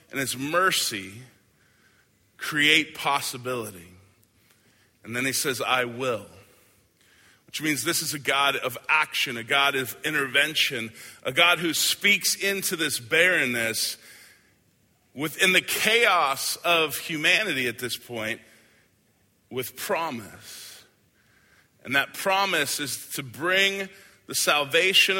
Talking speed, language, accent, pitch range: 115 wpm, English, American, 115-170 Hz